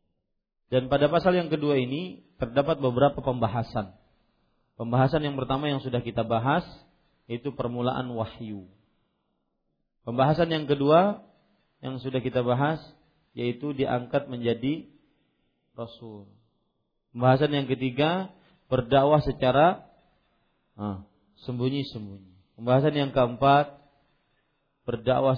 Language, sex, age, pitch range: Malay, male, 40-59, 120-160 Hz